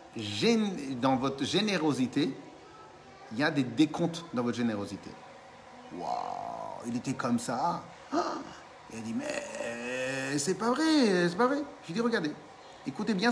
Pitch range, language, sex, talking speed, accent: 135-210 Hz, French, male, 140 wpm, French